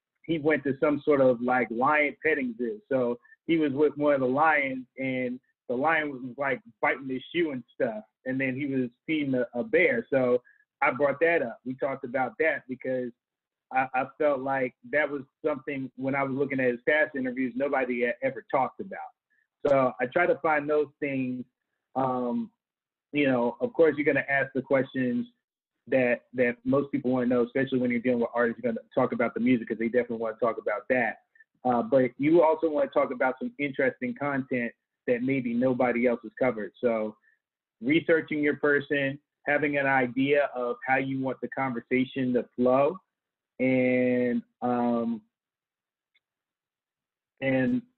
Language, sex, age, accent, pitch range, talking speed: English, male, 30-49, American, 125-150 Hz, 180 wpm